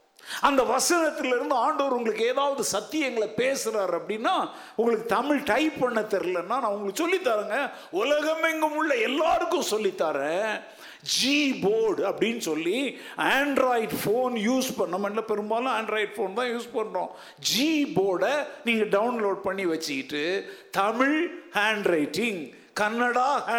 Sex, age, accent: male, 50-69, native